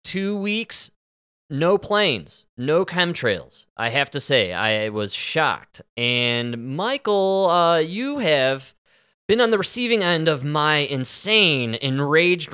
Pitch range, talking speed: 115-160 Hz, 130 wpm